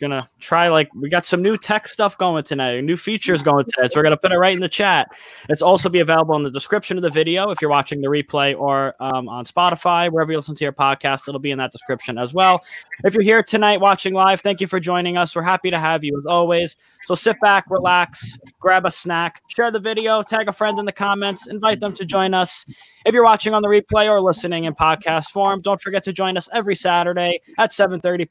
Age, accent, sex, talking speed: 20-39, American, male, 245 wpm